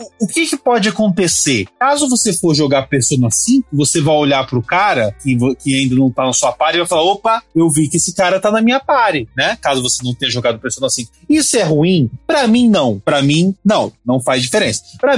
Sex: male